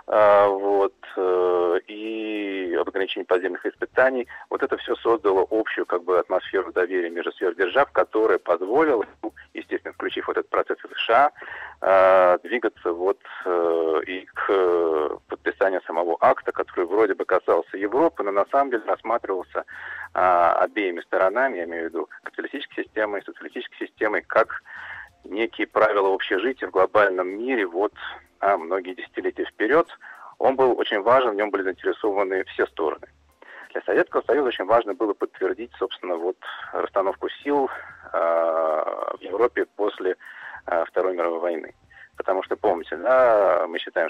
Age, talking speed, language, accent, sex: 40-59, 135 wpm, Russian, native, male